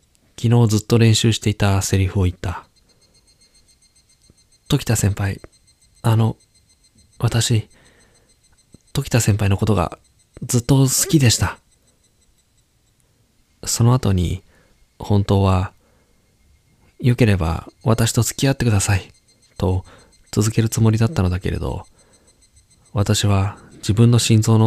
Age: 20-39